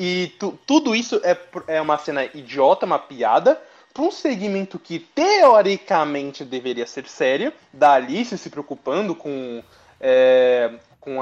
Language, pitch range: Portuguese, 140-240 Hz